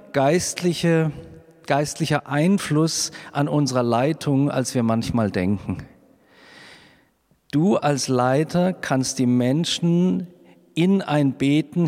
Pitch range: 120-155 Hz